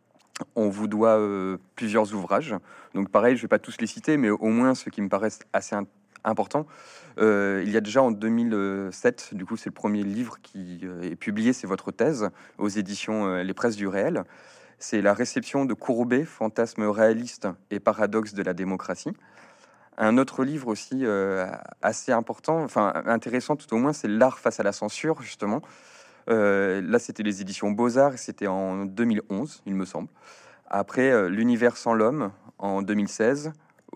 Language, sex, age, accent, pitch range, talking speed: French, male, 30-49, French, 100-120 Hz, 185 wpm